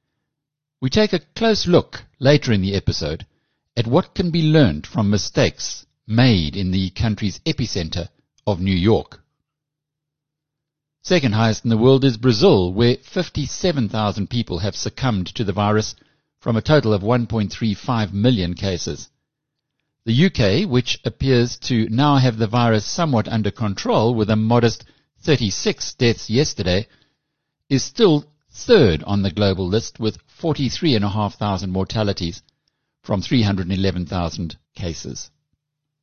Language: English